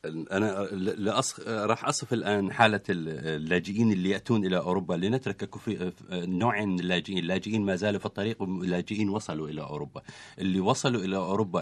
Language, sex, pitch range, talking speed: Italian, male, 95-115 Hz, 140 wpm